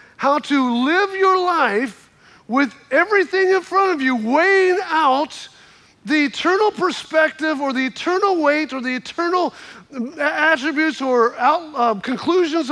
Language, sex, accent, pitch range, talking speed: English, male, American, 245-330 Hz, 125 wpm